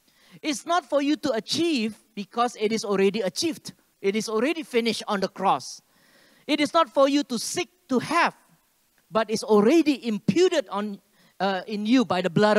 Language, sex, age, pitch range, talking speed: English, male, 40-59, 185-255 Hz, 180 wpm